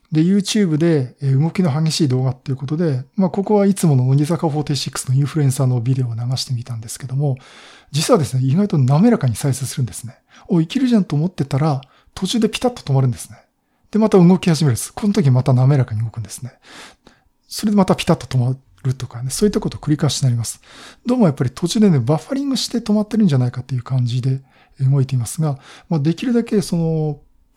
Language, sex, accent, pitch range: Japanese, male, native, 130-185 Hz